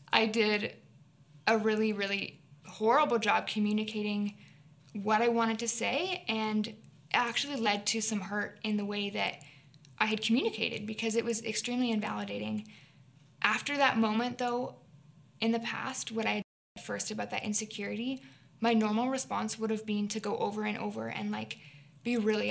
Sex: female